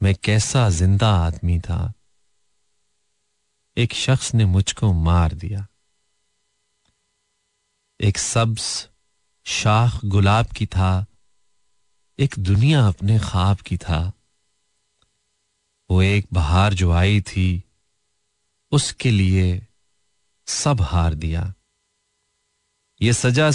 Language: Hindi